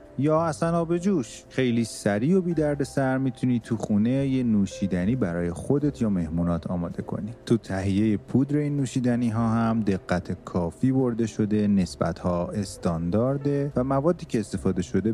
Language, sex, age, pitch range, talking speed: Persian, male, 30-49, 95-125 Hz, 160 wpm